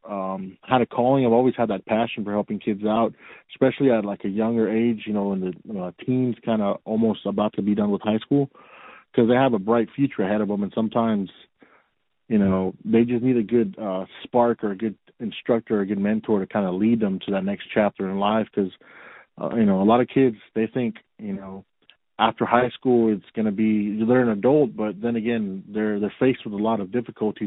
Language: English